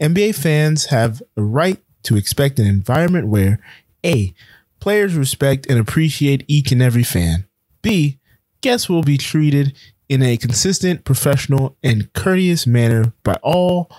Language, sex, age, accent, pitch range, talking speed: English, male, 20-39, American, 120-180 Hz, 140 wpm